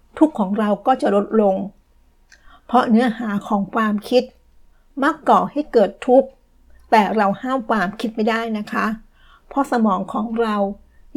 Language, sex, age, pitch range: Thai, female, 60-79, 210-245 Hz